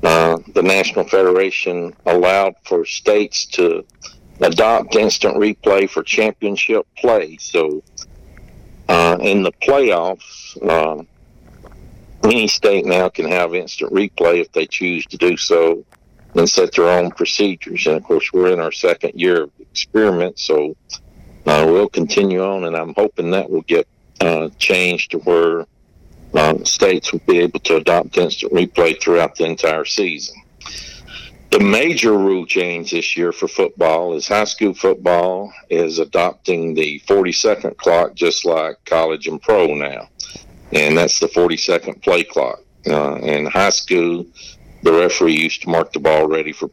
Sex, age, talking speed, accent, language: male, 60-79, 155 wpm, American, English